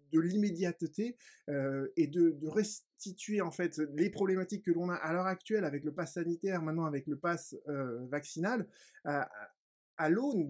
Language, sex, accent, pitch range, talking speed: French, male, French, 145-190 Hz, 170 wpm